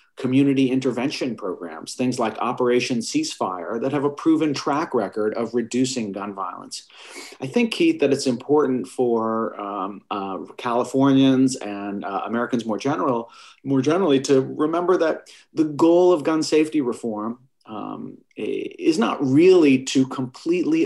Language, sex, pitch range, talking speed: English, male, 110-145 Hz, 140 wpm